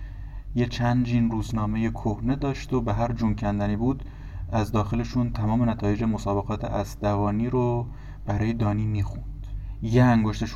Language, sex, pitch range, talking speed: Persian, male, 105-125 Hz, 135 wpm